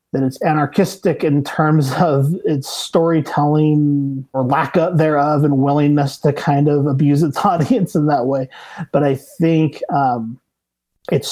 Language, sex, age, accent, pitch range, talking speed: English, male, 30-49, American, 135-150 Hz, 145 wpm